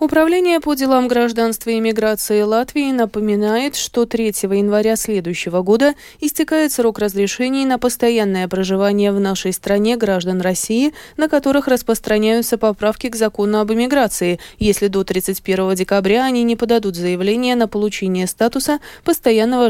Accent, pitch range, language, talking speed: native, 200-260 Hz, Russian, 135 wpm